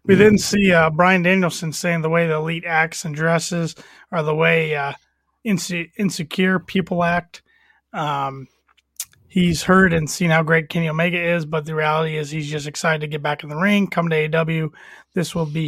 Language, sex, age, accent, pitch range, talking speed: English, male, 30-49, American, 155-175 Hz, 195 wpm